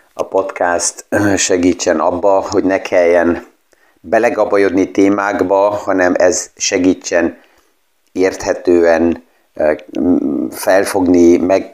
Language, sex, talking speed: Hungarian, male, 75 wpm